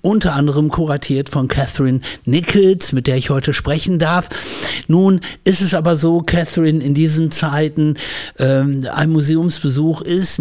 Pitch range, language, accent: 135-175 Hz, German, German